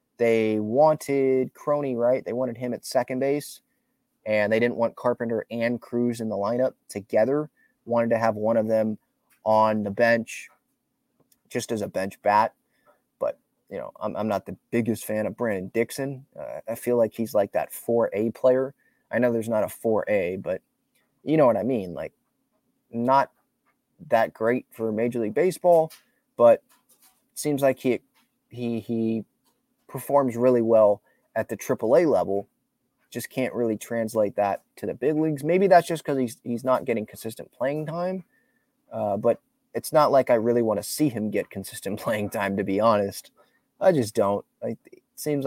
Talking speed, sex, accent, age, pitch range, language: 175 wpm, male, American, 20-39, 115-150 Hz, English